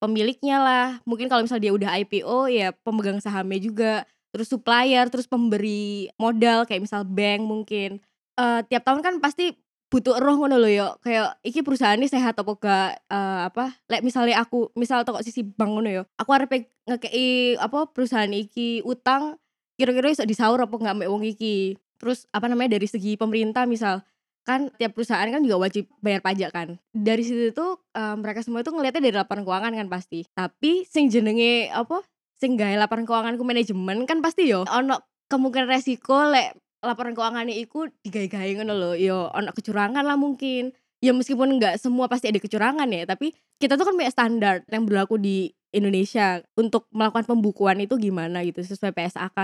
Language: Indonesian